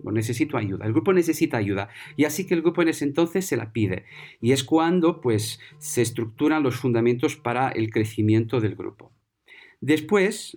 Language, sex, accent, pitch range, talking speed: Spanish, male, Spanish, 125-175 Hz, 175 wpm